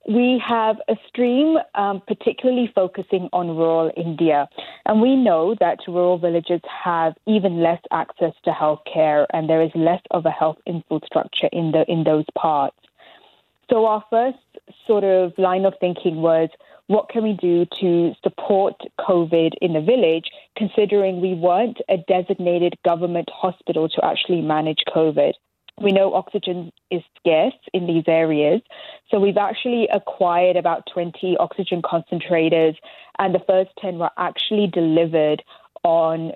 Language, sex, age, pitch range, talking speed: English, female, 20-39, 165-195 Hz, 145 wpm